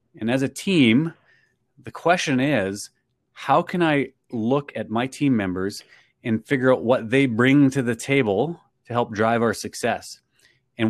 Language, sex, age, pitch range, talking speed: English, male, 30-49, 105-135 Hz, 165 wpm